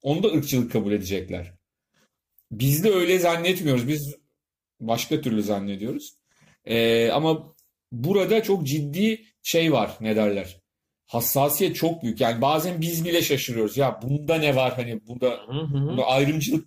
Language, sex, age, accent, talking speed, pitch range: Turkish, male, 40-59, native, 135 wpm, 115-160 Hz